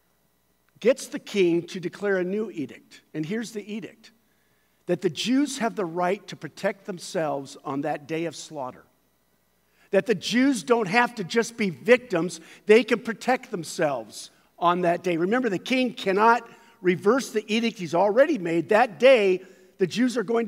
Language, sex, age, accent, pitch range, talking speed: English, male, 50-69, American, 170-235 Hz, 170 wpm